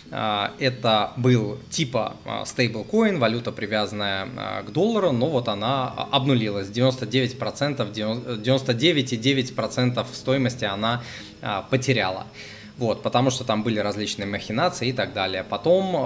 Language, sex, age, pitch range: Russian, male, 20-39, 105-130 Hz